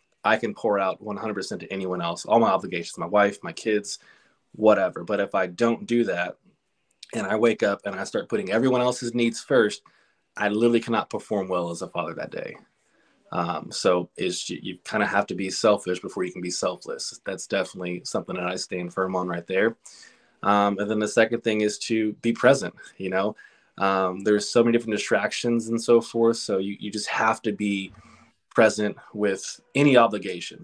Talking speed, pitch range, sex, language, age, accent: 200 wpm, 100-120 Hz, male, English, 20-39, American